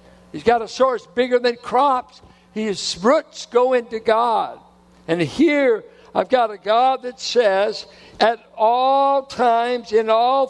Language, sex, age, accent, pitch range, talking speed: English, male, 60-79, American, 155-250 Hz, 145 wpm